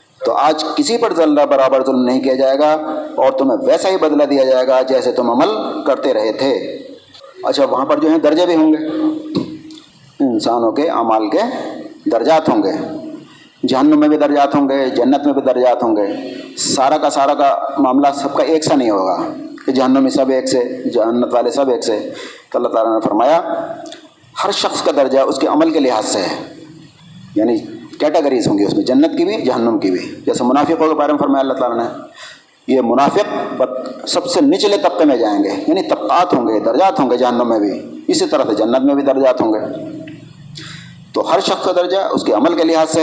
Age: 50-69